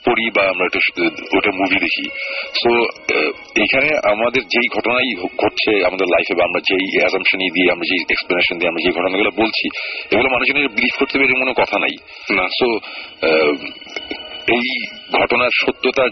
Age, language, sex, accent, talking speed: 40-59, Bengali, male, native, 75 wpm